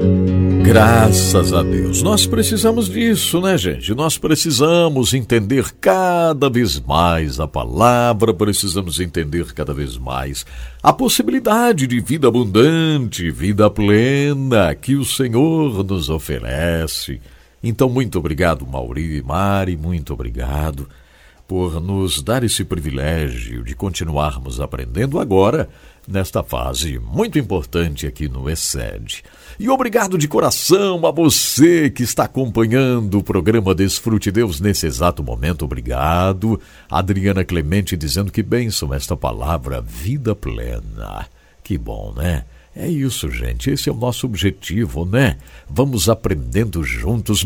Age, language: 60-79, English